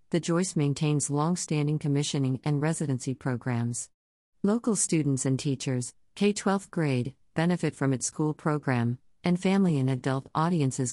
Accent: American